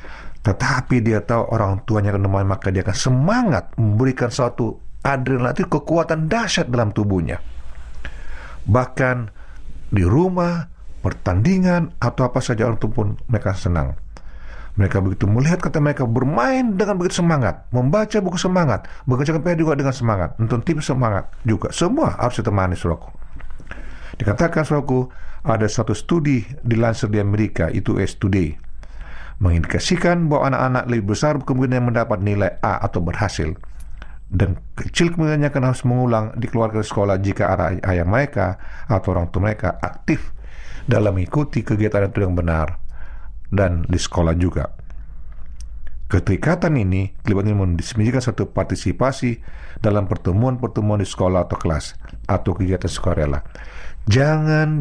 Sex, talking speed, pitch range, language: male, 130 wpm, 90-130 Hz, Indonesian